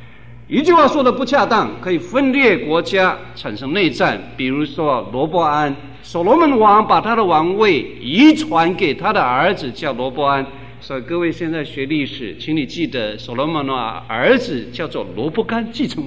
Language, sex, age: Chinese, male, 50-69